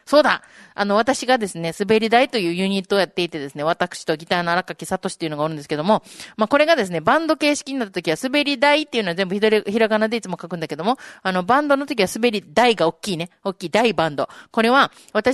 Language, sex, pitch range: Japanese, female, 190-255 Hz